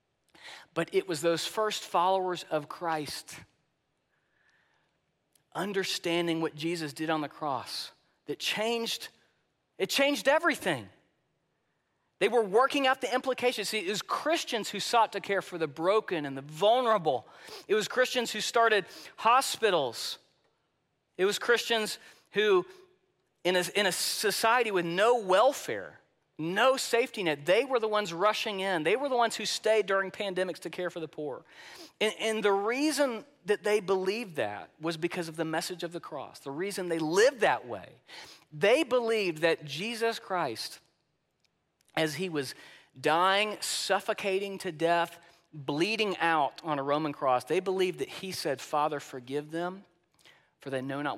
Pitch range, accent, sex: 165-225 Hz, American, male